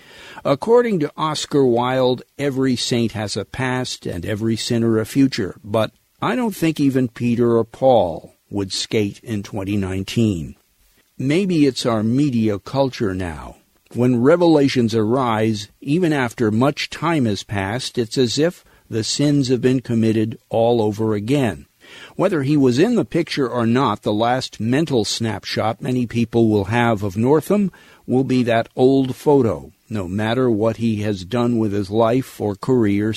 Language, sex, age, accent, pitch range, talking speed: English, male, 50-69, American, 110-135 Hz, 155 wpm